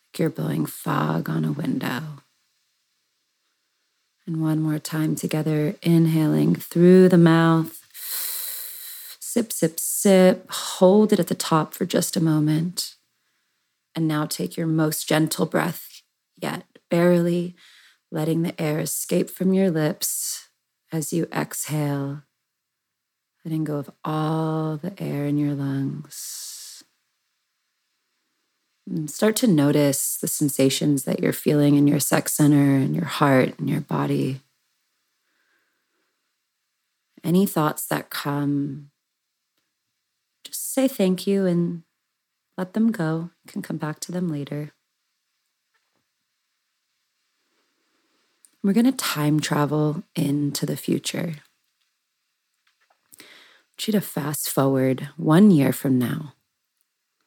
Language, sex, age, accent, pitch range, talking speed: English, female, 30-49, American, 145-185 Hz, 115 wpm